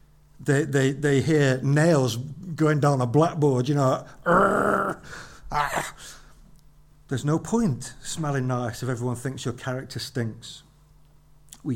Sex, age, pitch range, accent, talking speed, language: male, 50-69, 125-150 Hz, British, 120 wpm, English